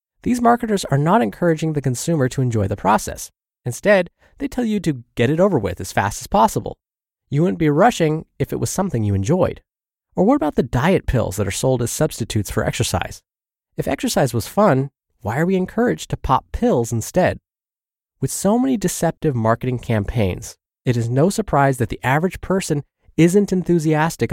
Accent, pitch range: American, 115-175 Hz